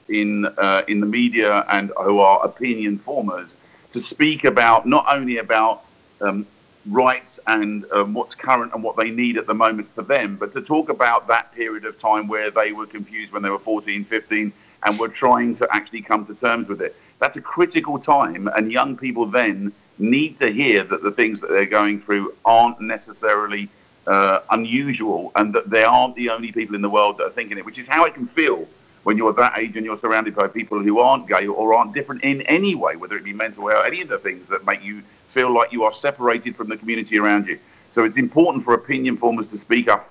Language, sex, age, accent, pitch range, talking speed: English, male, 50-69, British, 105-125 Hz, 225 wpm